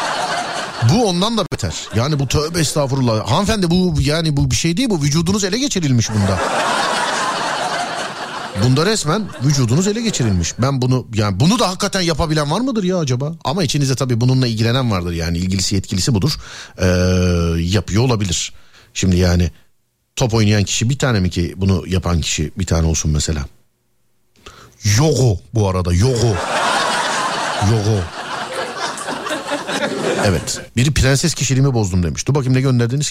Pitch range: 105-170 Hz